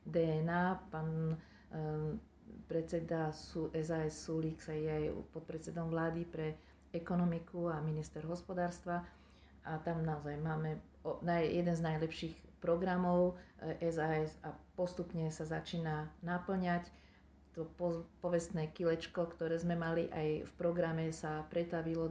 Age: 40-59